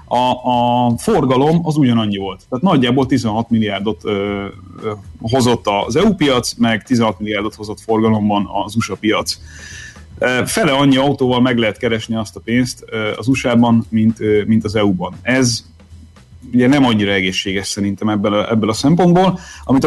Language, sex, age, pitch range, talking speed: Hungarian, male, 30-49, 105-125 Hz, 160 wpm